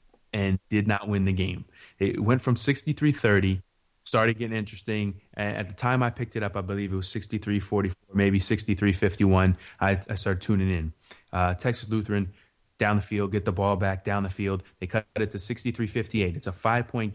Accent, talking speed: American, 195 wpm